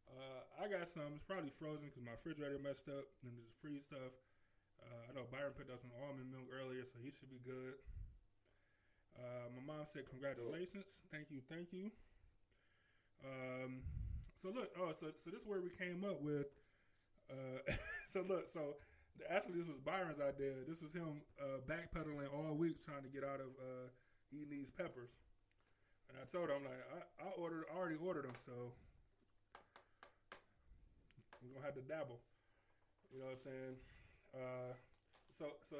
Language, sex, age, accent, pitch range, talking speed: English, male, 20-39, American, 120-150 Hz, 175 wpm